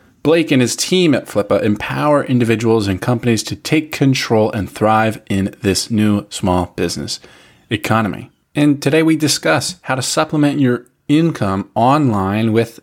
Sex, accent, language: male, American, English